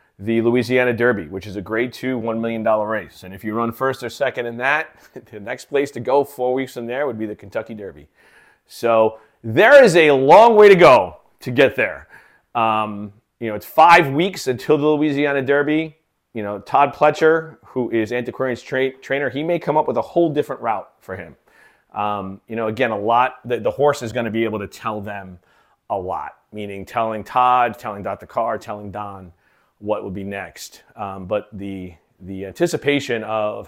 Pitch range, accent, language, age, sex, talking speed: 105-130 Hz, American, English, 30-49, male, 195 wpm